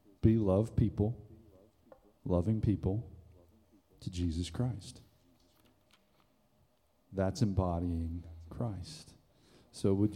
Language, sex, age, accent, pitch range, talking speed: English, male, 40-59, American, 95-125 Hz, 75 wpm